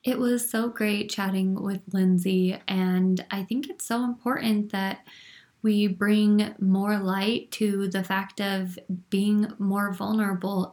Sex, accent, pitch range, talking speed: female, American, 185-210 Hz, 140 wpm